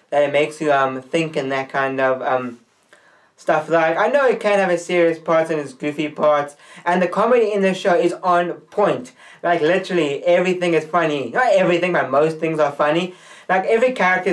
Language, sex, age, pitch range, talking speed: English, male, 20-39, 150-175 Hz, 205 wpm